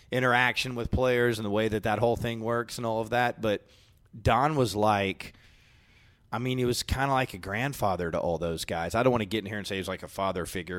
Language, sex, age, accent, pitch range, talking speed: English, male, 30-49, American, 95-115 Hz, 265 wpm